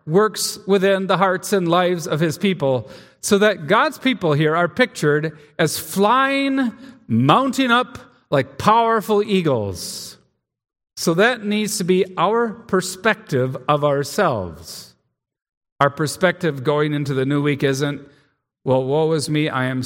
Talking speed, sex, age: 140 wpm, male, 50-69